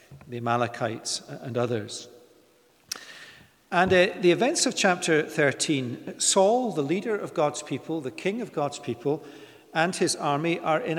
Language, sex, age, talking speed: English, male, 50-69, 145 wpm